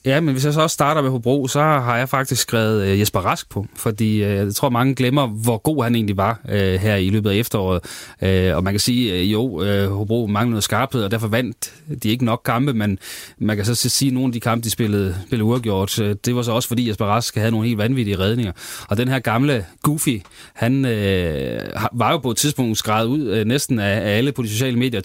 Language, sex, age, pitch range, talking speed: Danish, male, 30-49, 100-125 Hz, 250 wpm